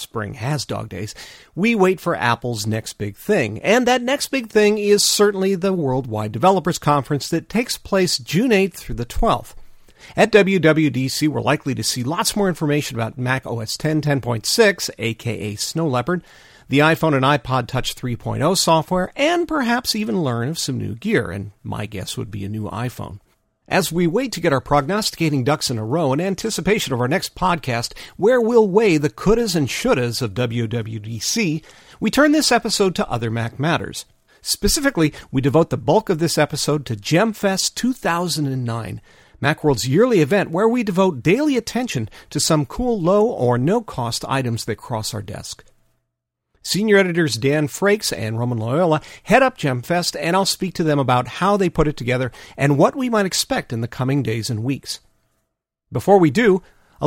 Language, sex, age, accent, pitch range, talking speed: English, male, 50-69, American, 120-195 Hz, 180 wpm